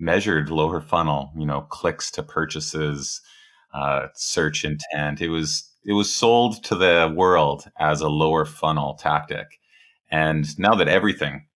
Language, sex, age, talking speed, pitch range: English, male, 30-49, 145 wpm, 75-85 Hz